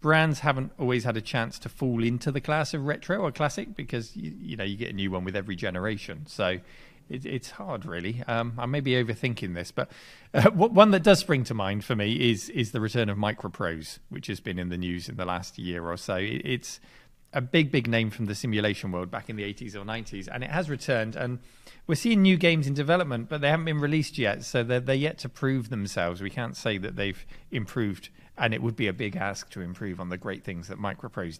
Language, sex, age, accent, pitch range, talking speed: English, male, 40-59, British, 100-135 Hz, 245 wpm